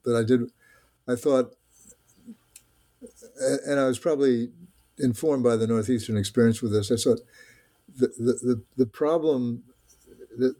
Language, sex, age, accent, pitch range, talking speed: English, male, 60-79, American, 110-130 Hz, 135 wpm